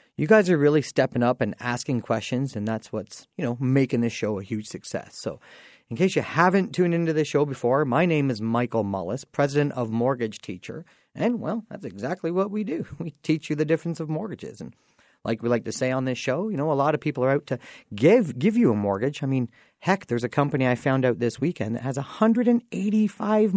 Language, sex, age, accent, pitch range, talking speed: English, male, 40-59, American, 120-170 Hz, 230 wpm